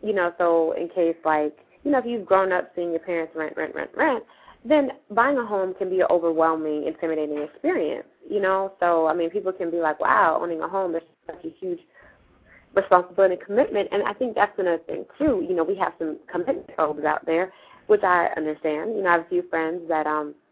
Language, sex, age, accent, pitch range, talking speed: English, female, 20-39, American, 160-195 Hz, 225 wpm